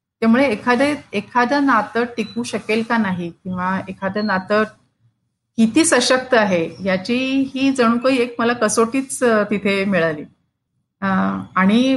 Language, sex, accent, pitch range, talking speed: Marathi, female, native, 190-235 Hz, 115 wpm